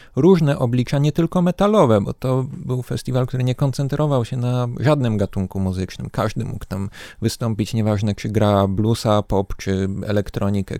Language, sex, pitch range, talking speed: Polish, male, 110-140 Hz, 155 wpm